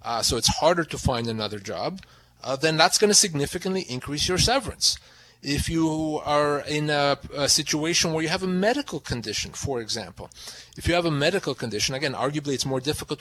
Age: 30-49